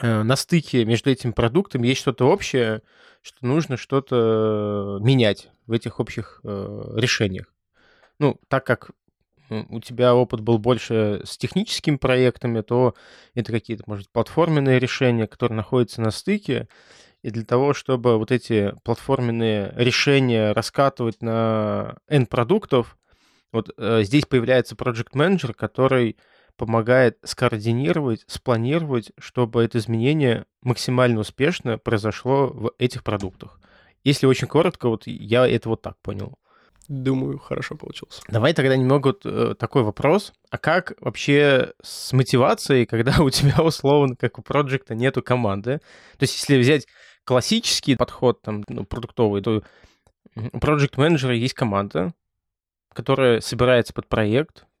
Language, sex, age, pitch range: Russian, male, 20-39, 115-135 Hz